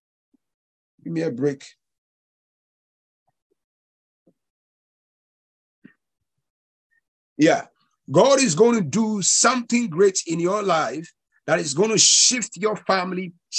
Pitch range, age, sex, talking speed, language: 165-220 Hz, 50-69, male, 95 wpm, English